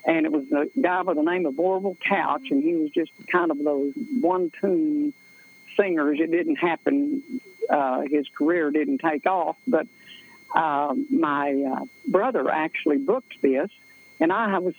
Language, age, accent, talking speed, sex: English, 60-79, American, 160 wpm, female